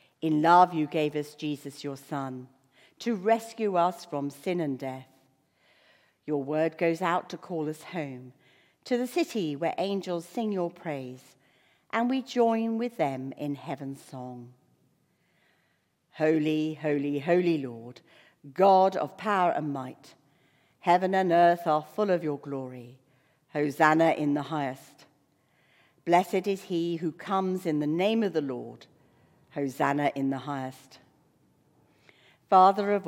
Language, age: English, 60-79